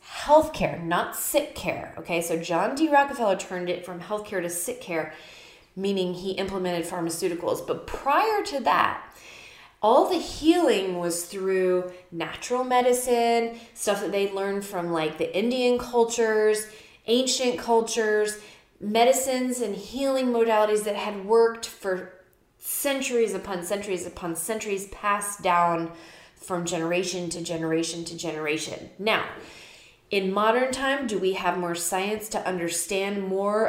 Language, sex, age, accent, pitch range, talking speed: English, female, 20-39, American, 180-245 Hz, 135 wpm